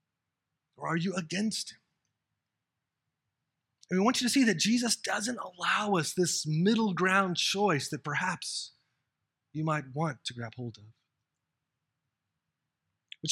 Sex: male